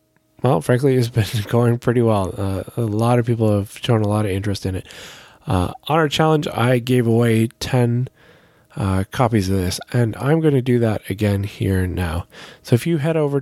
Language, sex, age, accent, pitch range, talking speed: English, male, 20-39, American, 100-130 Hz, 210 wpm